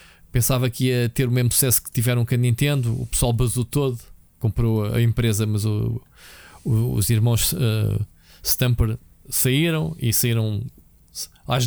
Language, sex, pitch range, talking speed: Portuguese, male, 115-145 Hz, 140 wpm